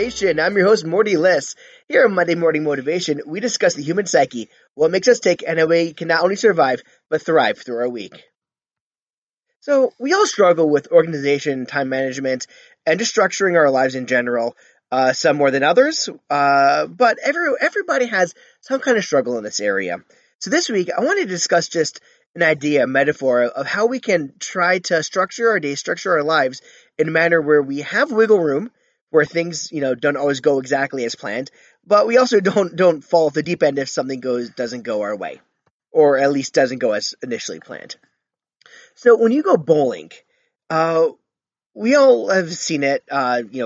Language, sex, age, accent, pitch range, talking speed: English, male, 20-39, American, 140-215 Hz, 195 wpm